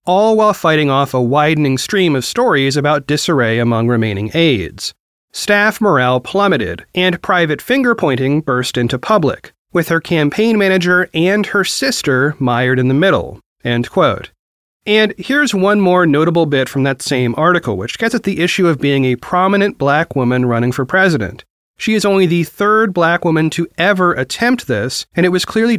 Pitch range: 130-195 Hz